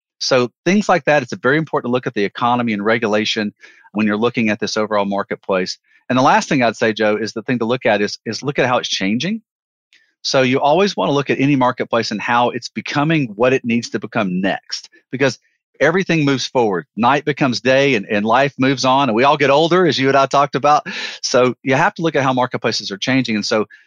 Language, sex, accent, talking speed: English, male, American, 240 wpm